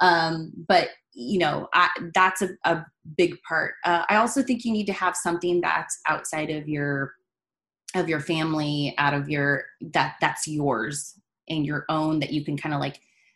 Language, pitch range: English, 140-175 Hz